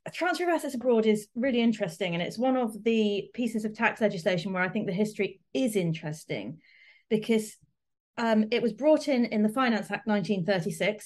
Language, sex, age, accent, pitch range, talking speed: English, female, 30-49, British, 185-240 Hz, 185 wpm